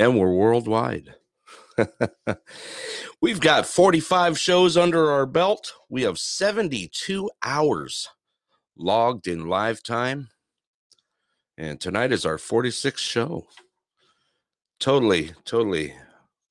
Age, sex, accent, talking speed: 50-69, male, American, 95 wpm